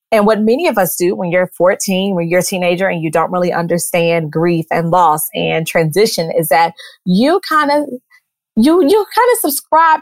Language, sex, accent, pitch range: English, female, American, 180-245 Hz